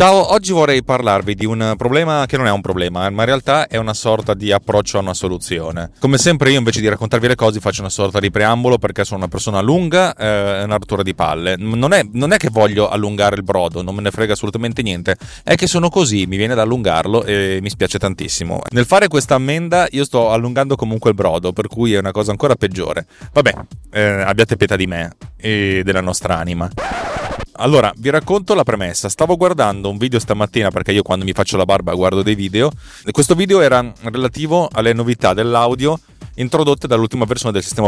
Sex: male